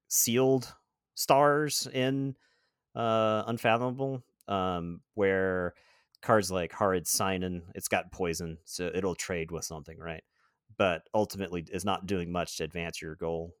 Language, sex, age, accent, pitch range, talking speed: English, male, 30-49, American, 85-105 Hz, 130 wpm